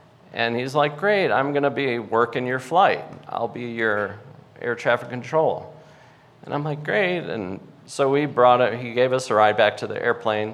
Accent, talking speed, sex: American, 195 wpm, male